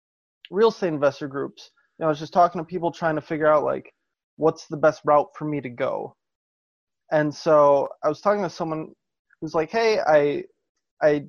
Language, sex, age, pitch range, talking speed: English, male, 20-39, 155-195 Hz, 195 wpm